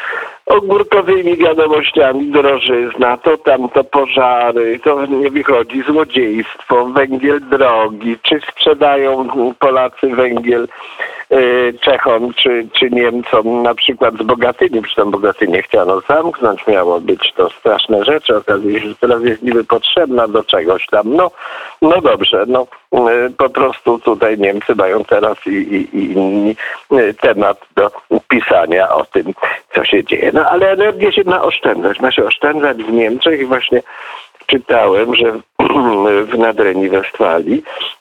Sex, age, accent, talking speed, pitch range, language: male, 50-69, native, 135 wpm, 120-160 Hz, Polish